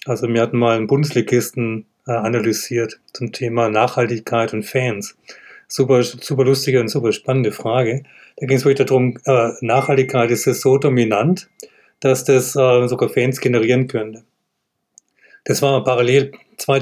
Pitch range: 115-135 Hz